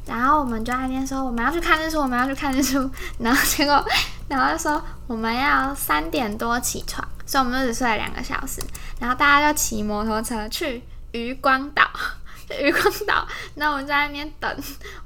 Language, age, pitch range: Chinese, 10-29, 250-335 Hz